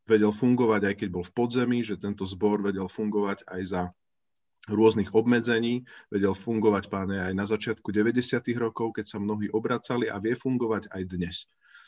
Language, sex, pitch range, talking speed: Slovak, male, 100-125 Hz, 165 wpm